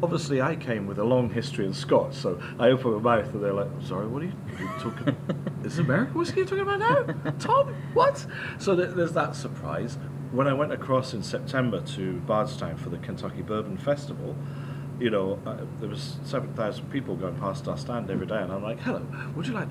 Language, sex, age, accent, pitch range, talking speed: Hebrew, male, 40-59, British, 130-155 Hz, 220 wpm